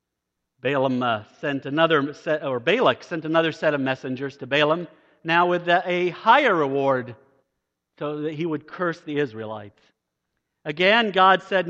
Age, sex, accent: 50-69, male, American